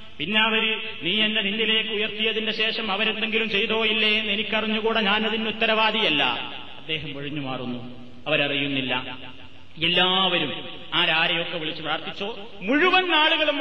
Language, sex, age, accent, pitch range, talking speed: Malayalam, male, 30-49, native, 160-235 Hz, 95 wpm